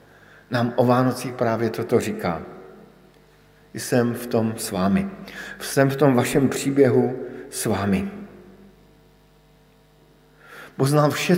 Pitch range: 115-140 Hz